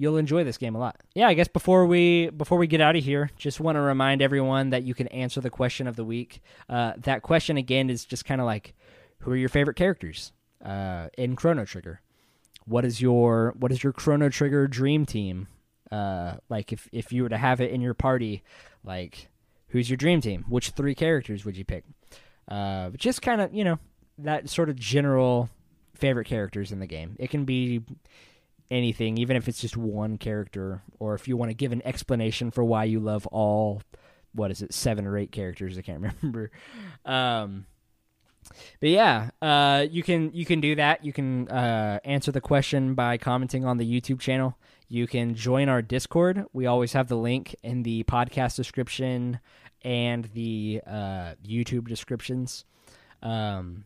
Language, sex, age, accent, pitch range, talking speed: English, male, 20-39, American, 110-140 Hz, 190 wpm